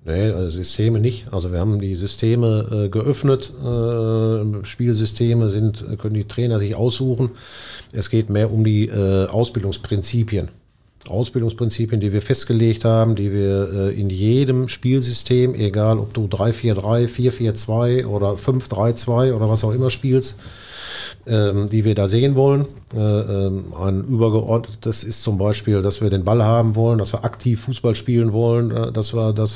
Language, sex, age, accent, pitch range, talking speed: German, male, 40-59, German, 105-120 Hz, 150 wpm